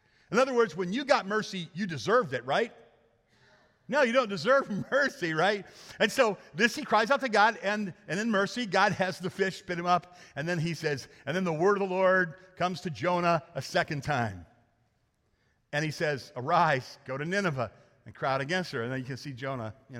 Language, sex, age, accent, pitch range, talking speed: English, male, 50-69, American, 130-200 Hz, 215 wpm